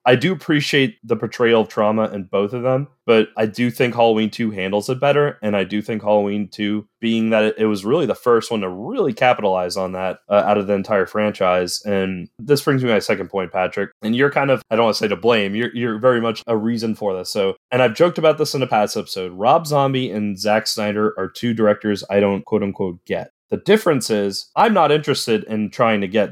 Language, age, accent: English, 20-39, American